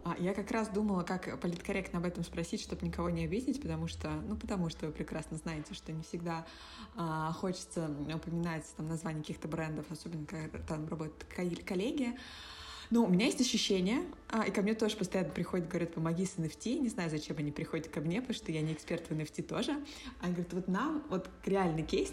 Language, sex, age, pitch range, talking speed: Russian, female, 20-39, 165-210 Hz, 200 wpm